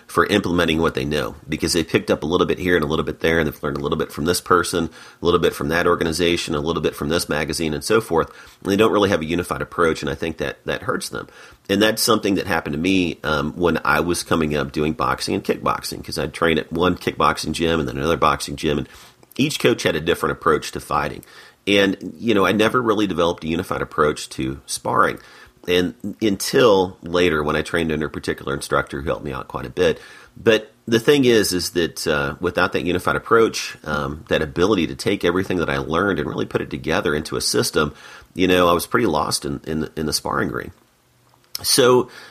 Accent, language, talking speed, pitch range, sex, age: American, English, 235 wpm, 75-95 Hz, male, 40-59